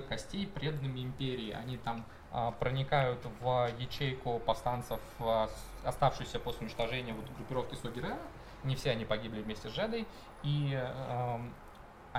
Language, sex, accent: Russian, male, native